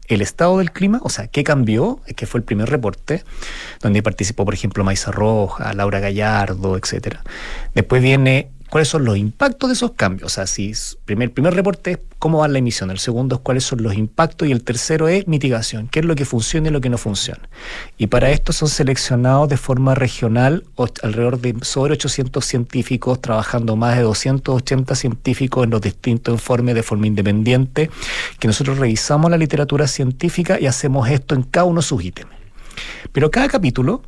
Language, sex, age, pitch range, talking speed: Spanish, male, 40-59, 115-160 Hz, 190 wpm